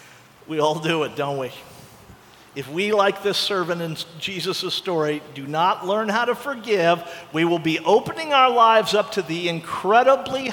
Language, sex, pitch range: English, male, 170-250 Hz